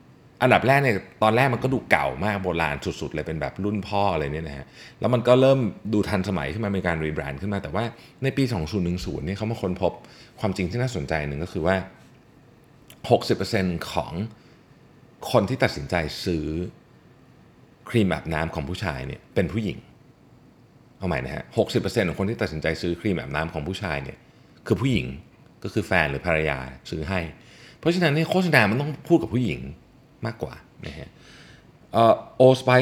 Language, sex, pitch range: Thai, male, 80-115 Hz